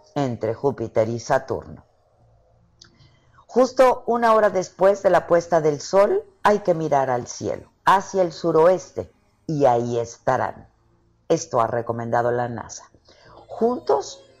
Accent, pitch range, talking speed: Mexican, 135-205 Hz, 125 wpm